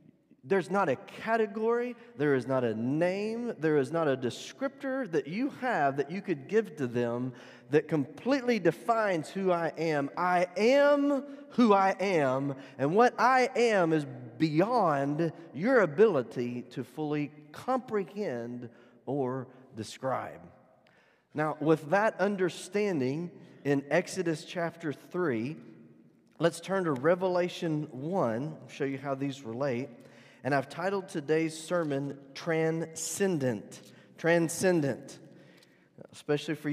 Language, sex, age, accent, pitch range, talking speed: English, male, 40-59, American, 135-190 Hz, 120 wpm